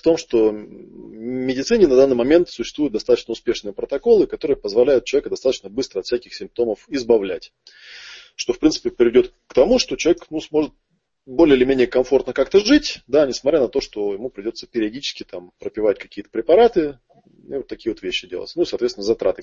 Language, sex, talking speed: Russian, male, 180 wpm